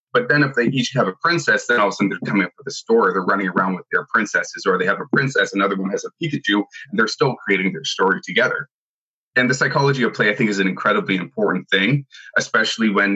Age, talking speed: 20-39, 255 wpm